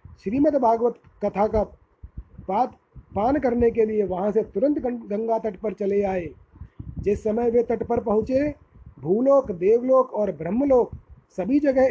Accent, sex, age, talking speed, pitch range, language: native, male, 30-49, 135 wpm, 210-260 Hz, Hindi